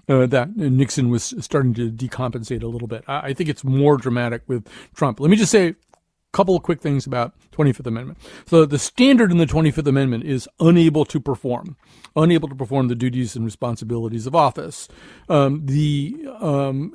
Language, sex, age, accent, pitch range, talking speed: English, male, 40-59, American, 125-165 Hz, 185 wpm